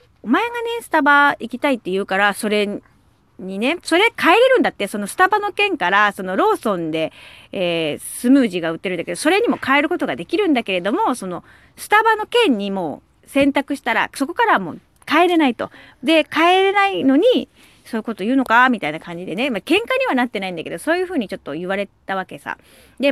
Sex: female